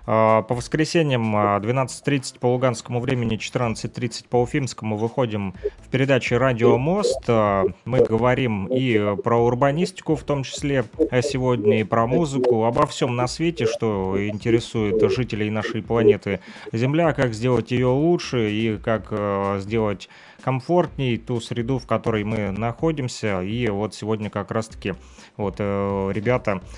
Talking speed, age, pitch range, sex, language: 130 wpm, 30-49, 105-125 Hz, male, Russian